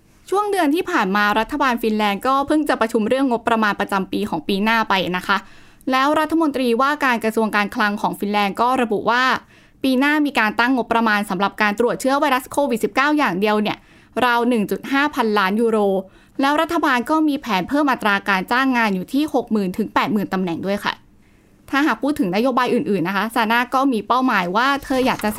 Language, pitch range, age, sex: Thai, 215-280 Hz, 20-39, female